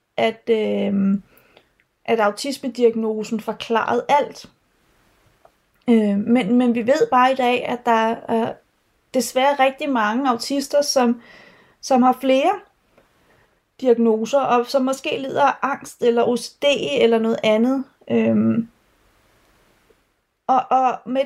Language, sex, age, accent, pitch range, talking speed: Danish, female, 30-49, native, 230-275 Hz, 115 wpm